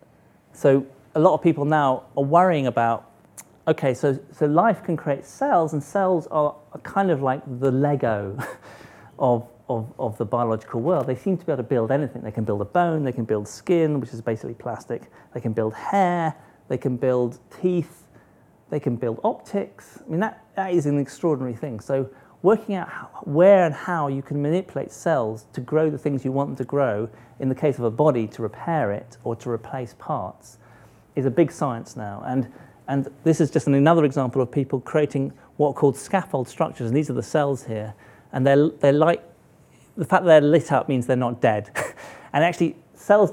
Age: 40-59